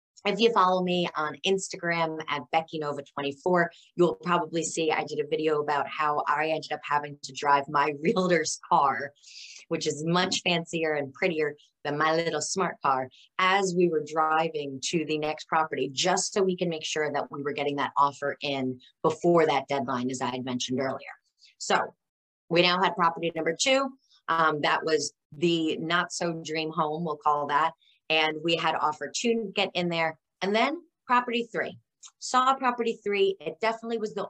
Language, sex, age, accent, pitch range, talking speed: English, female, 20-39, American, 150-190 Hz, 180 wpm